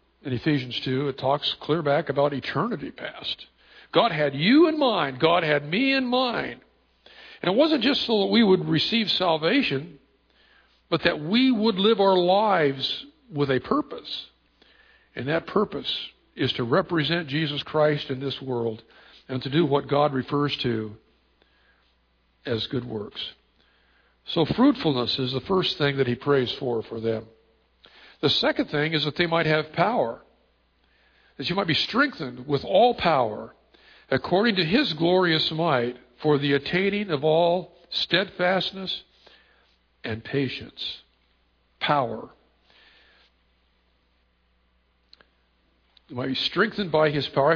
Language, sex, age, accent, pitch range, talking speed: English, male, 60-79, American, 125-175 Hz, 140 wpm